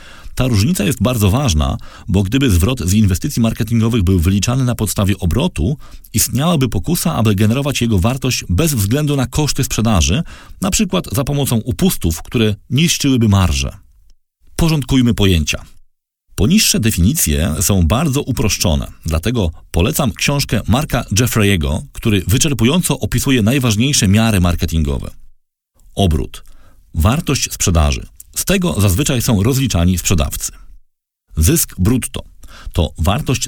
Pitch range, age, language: 90-135 Hz, 40-59, Polish